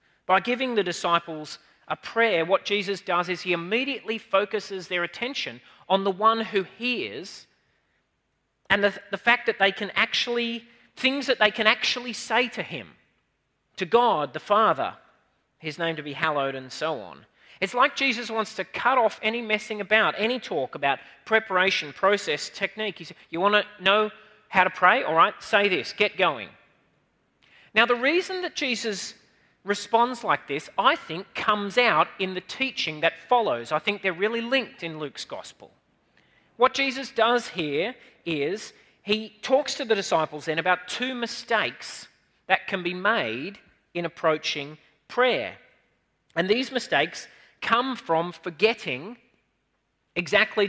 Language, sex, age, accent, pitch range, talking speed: English, male, 40-59, Australian, 170-230 Hz, 155 wpm